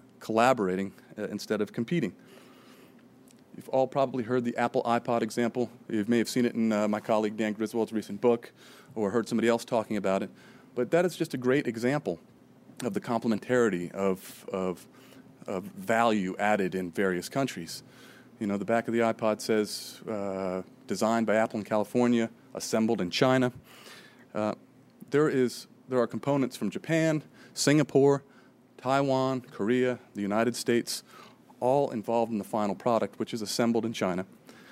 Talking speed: 160 wpm